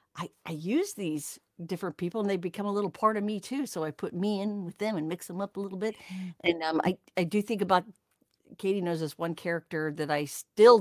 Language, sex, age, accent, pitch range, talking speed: English, female, 50-69, American, 170-225 Hz, 245 wpm